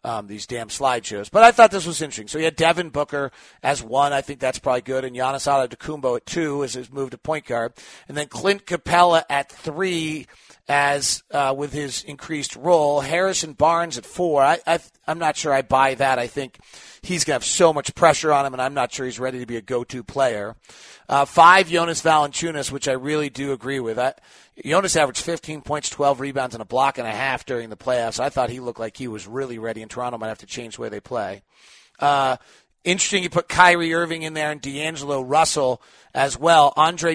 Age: 40-59